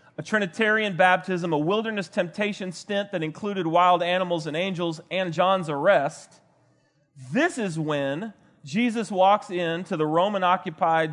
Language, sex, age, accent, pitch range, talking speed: English, male, 40-59, American, 160-210 Hz, 130 wpm